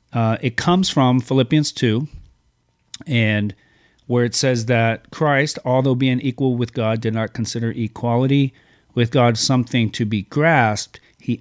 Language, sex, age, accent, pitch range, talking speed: English, male, 40-59, American, 115-135 Hz, 145 wpm